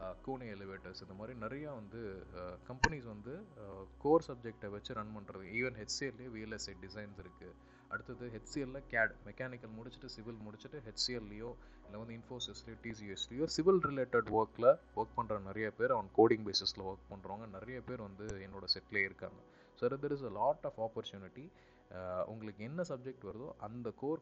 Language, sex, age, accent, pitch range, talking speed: Tamil, male, 30-49, native, 100-125 Hz, 150 wpm